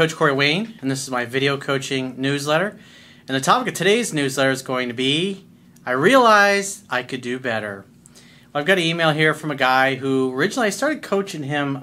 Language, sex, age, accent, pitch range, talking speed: English, male, 40-59, American, 130-160 Hz, 210 wpm